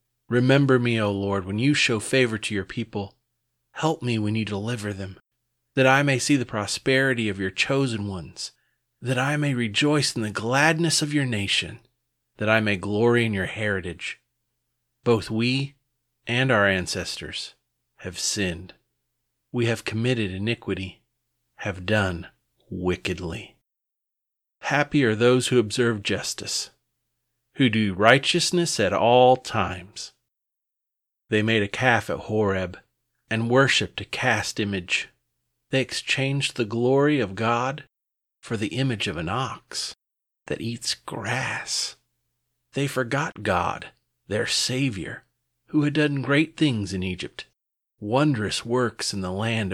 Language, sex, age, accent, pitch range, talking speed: English, male, 40-59, American, 100-130 Hz, 135 wpm